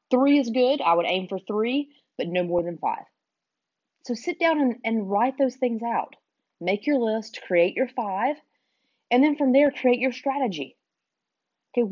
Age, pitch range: 30-49, 175-240 Hz